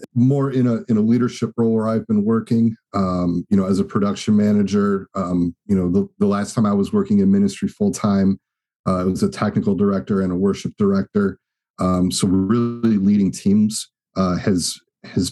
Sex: male